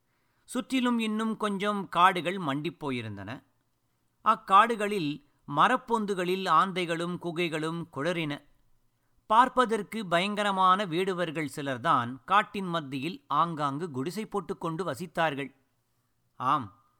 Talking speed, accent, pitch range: 75 wpm, native, 145-205 Hz